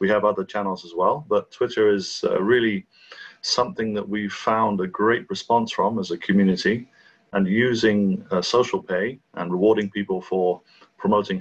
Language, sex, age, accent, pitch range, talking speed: English, male, 30-49, British, 95-110 Hz, 170 wpm